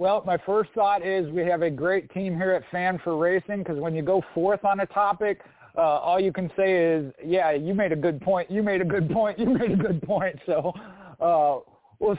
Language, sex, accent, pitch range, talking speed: English, male, American, 155-195 Hz, 235 wpm